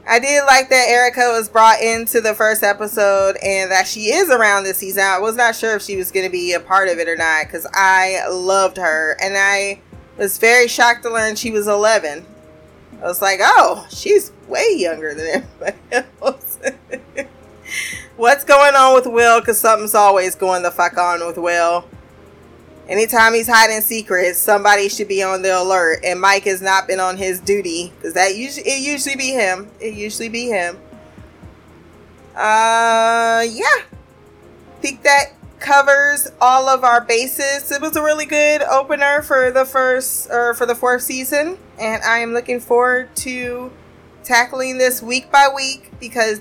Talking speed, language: 175 wpm, English